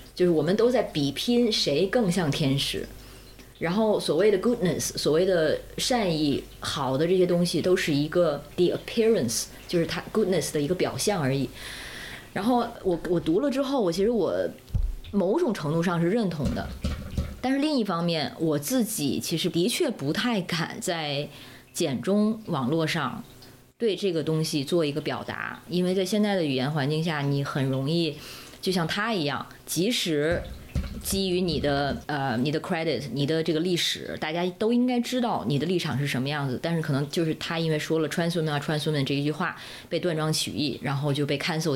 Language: Chinese